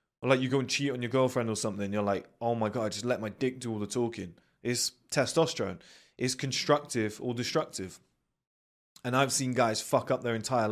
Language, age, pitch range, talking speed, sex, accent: English, 20-39, 105-125 Hz, 220 wpm, male, British